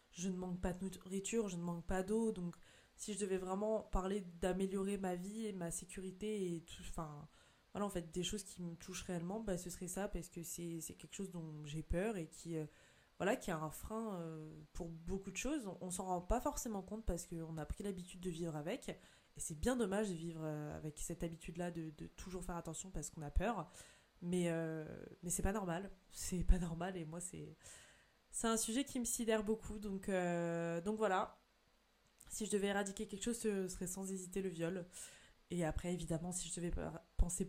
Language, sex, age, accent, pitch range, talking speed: French, female, 20-39, French, 170-195 Hz, 220 wpm